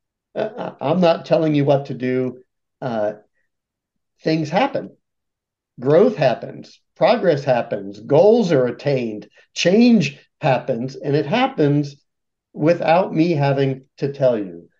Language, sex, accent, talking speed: English, male, American, 115 wpm